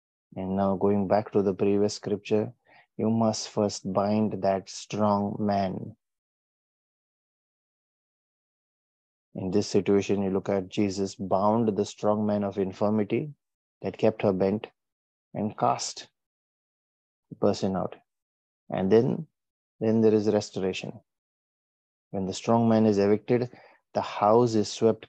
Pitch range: 100-110 Hz